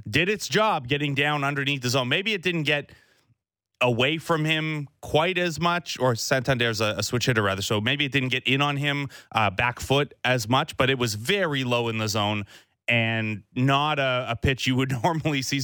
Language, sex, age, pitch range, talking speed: English, male, 30-49, 115-145 Hz, 210 wpm